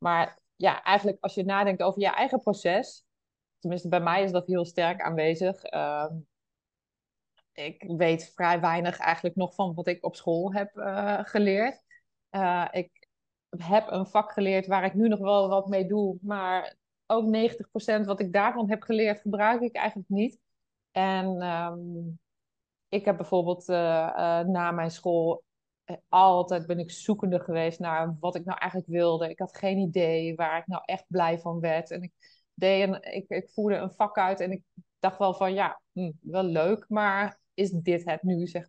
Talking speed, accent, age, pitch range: 175 wpm, Dutch, 20-39, 170-205 Hz